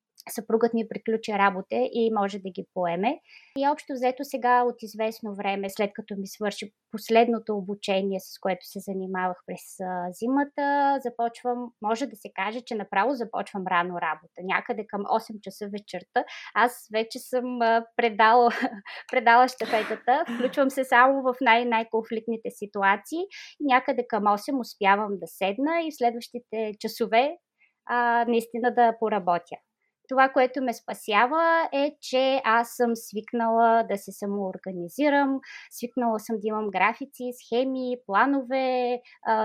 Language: Bulgarian